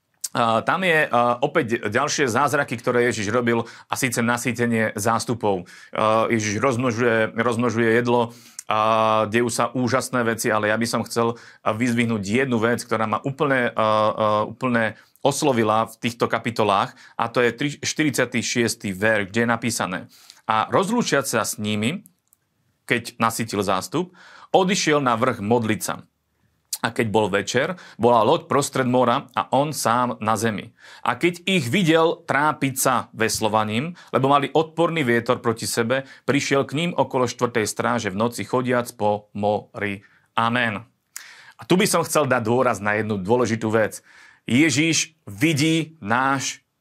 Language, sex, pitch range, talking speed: Slovak, male, 110-135 Hz, 140 wpm